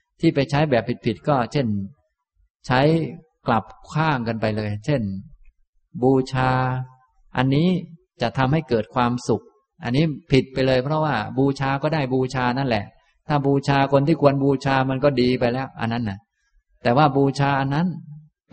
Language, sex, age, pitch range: Thai, male, 20-39, 110-135 Hz